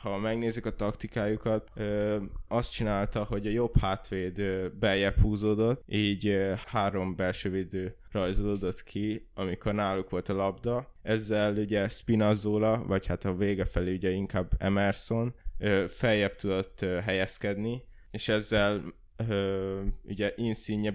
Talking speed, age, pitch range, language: 115 wpm, 20-39, 95-110 Hz, Hungarian